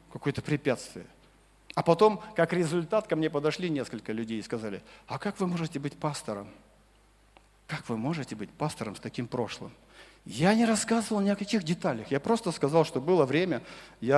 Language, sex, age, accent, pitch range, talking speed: Russian, male, 40-59, native, 125-175 Hz, 175 wpm